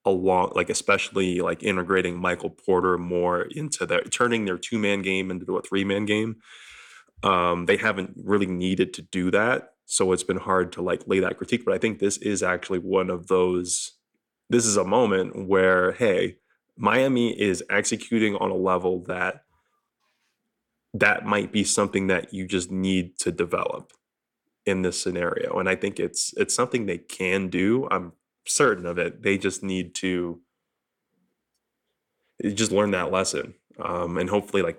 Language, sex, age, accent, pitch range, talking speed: English, male, 20-39, American, 90-105 Hz, 165 wpm